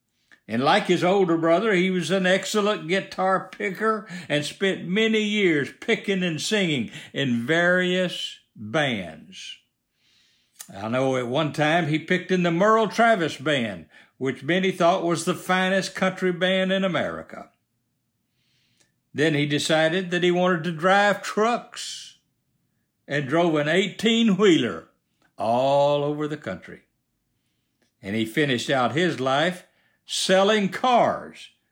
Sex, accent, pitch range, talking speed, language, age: male, American, 145-205 Hz, 130 wpm, English, 60-79